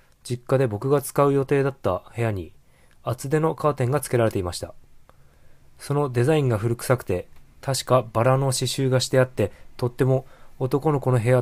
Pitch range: 105-135 Hz